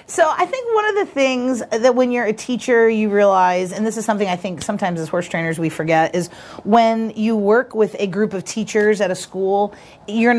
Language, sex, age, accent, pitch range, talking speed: English, female, 30-49, American, 170-210 Hz, 225 wpm